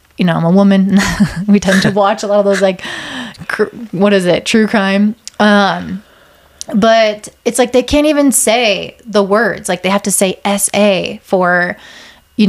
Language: English